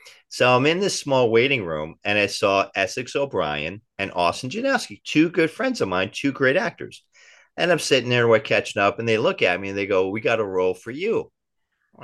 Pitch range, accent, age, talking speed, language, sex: 95-135 Hz, American, 40-59, 225 wpm, English, male